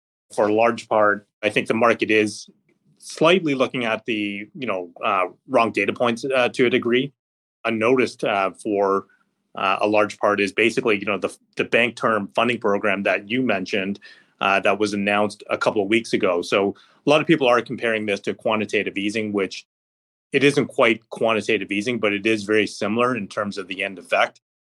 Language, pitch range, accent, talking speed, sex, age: English, 100-115 Hz, American, 195 wpm, male, 30-49